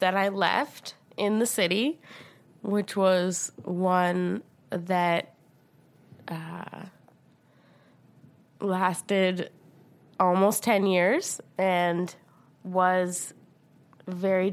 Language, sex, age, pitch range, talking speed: English, female, 20-39, 170-195 Hz, 75 wpm